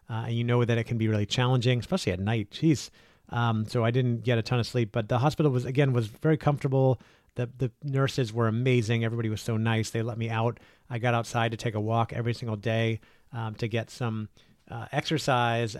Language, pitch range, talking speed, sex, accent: English, 115-130 Hz, 230 wpm, male, American